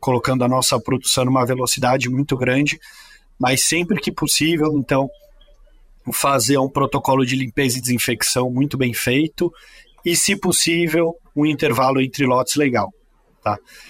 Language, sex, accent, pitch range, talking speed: Portuguese, male, Brazilian, 130-165 Hz, 145 wpm